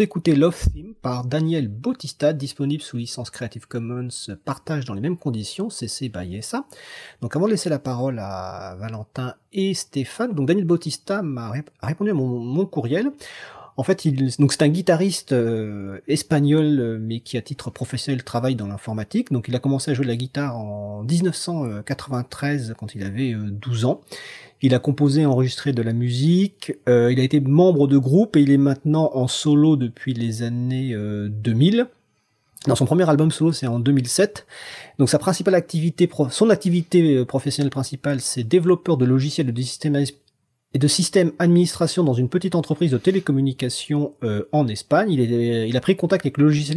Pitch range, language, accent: 120-160 Hz, French, French